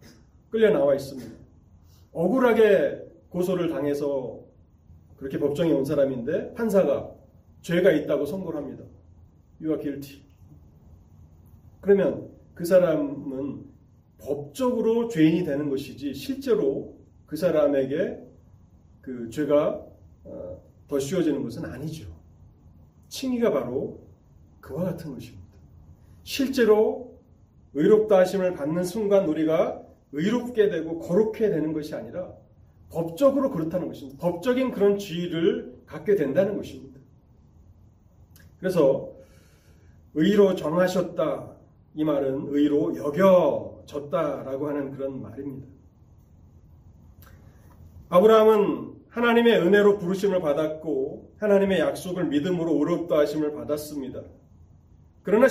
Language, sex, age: Korean, male, 30-49